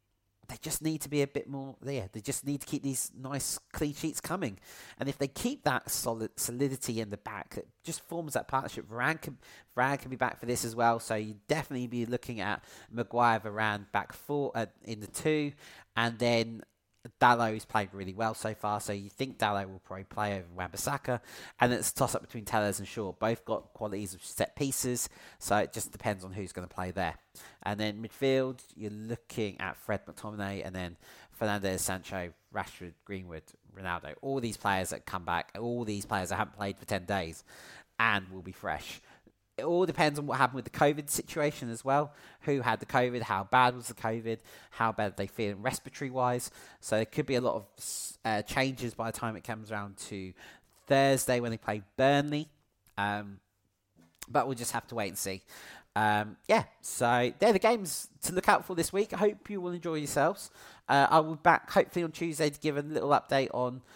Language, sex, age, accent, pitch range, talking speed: English, male, 30-49, British, 105-135 Hz, 210 wpm